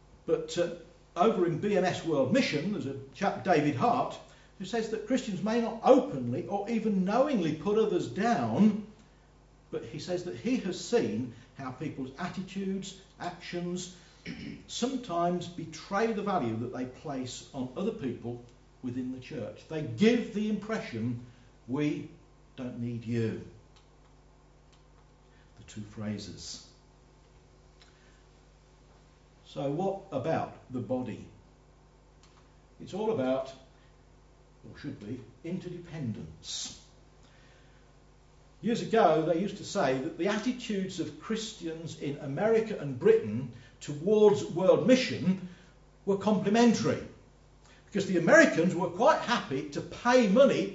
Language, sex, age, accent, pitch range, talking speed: English, male, 50-69, British, 130-210 Hz, 120 wpm